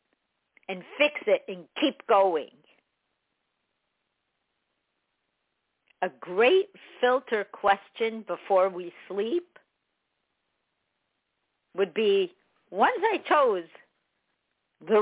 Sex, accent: female, American